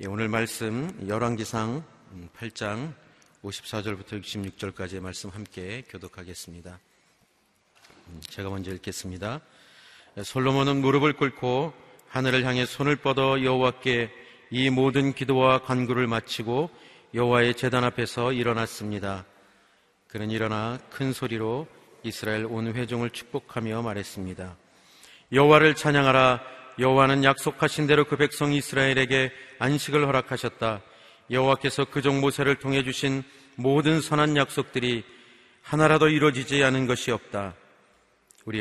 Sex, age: male, 40-59